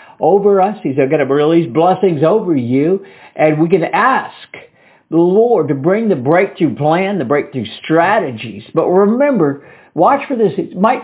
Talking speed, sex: 165 wpm, male